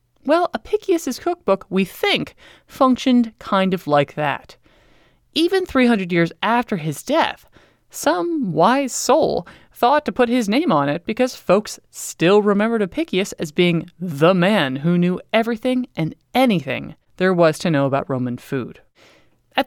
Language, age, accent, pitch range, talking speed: English, 20-39, American, 160-255 Hz, 145 wpm